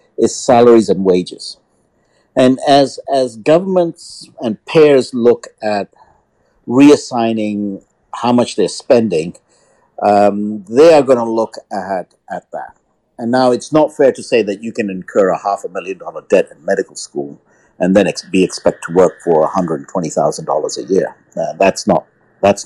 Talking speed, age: 170 wpm, 60-79